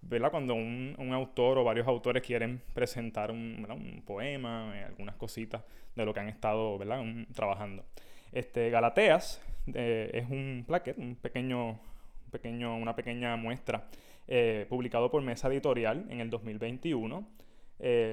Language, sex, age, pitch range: English, male, 20-39, 110-130 Hz